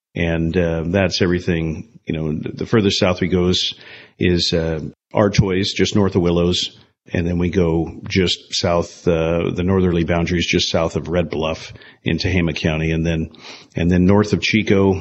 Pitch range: 90-105 Hz